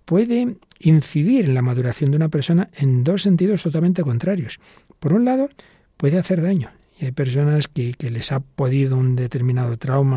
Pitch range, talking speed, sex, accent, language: 125-165 Hz, 175 wpm, male, Spanish, Spanish